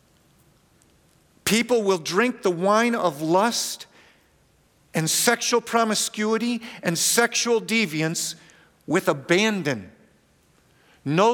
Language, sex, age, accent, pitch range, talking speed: English, male, 50-69, American, 150-195 Hz, 85 wpm